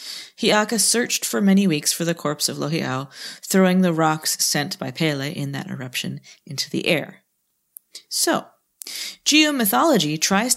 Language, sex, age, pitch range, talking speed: English, female, 30-49, 155-205 Hz, 140 wpm